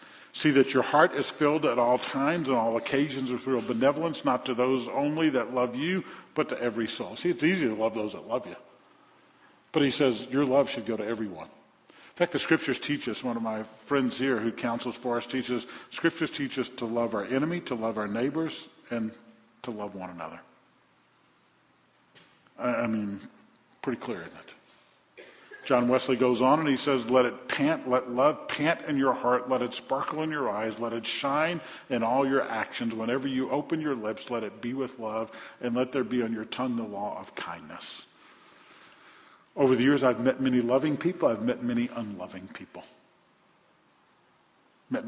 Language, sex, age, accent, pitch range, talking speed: English, male, 50-69, American, 115-135 Hz, 195 wpm